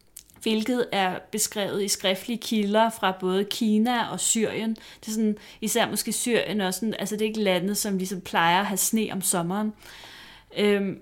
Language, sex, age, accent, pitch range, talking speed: Danish, female, 30-49, native, 195-225 Hz, 180 wpm